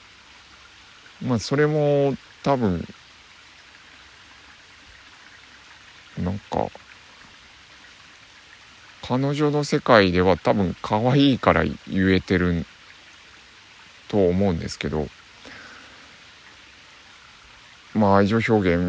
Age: 50-69